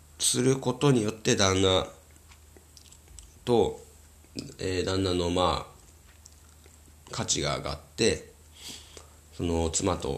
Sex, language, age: male, Japanese, 40-59